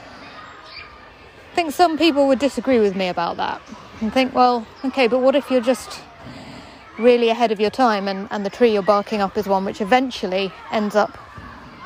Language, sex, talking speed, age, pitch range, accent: English, female, 185 wpm, 30-49, 200-240 Hz, British